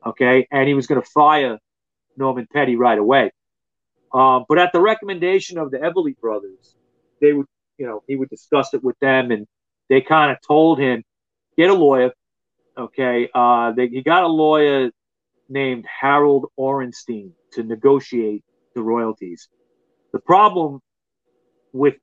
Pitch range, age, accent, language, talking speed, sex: 125-155 Hz, 40-59, American, English, 150 wpm, male